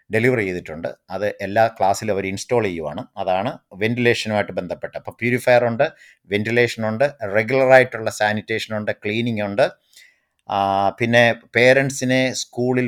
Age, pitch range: 50-69, 105-125 Hz